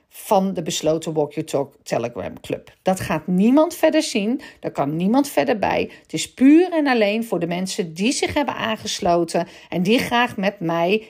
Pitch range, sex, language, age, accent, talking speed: 200-270 Hz, female, Dutch, 50-69, Dutch, 190 wpm